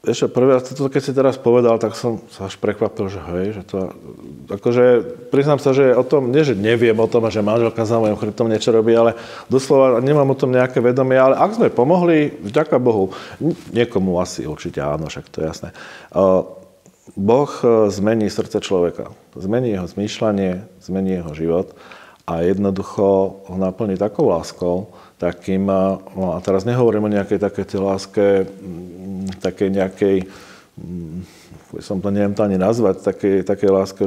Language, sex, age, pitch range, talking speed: Slovak, male, 40-59, 95-120 Hz, 160 wpm